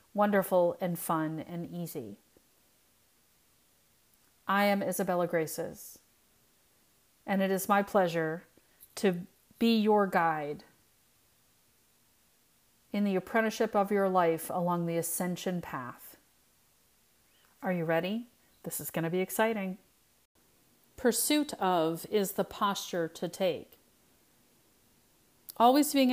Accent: American